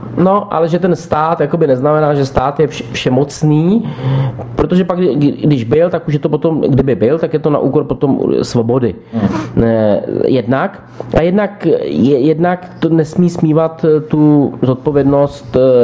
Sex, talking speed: male, 145 wpm